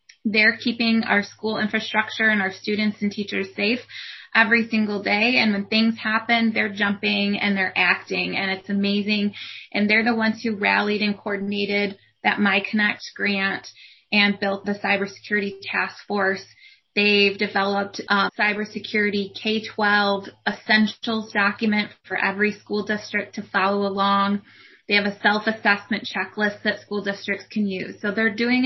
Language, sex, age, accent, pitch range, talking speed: English, female, 20-39, American, 200-225 Hz, 145 wpm